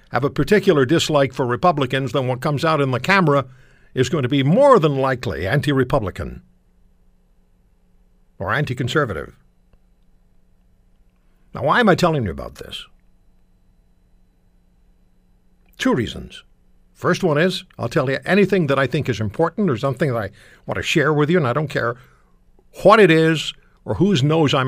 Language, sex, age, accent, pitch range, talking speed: English, male, 60-79, American, 100-165 Hz, 160 wpm